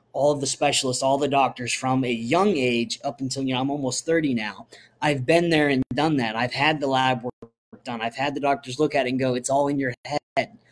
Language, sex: English, male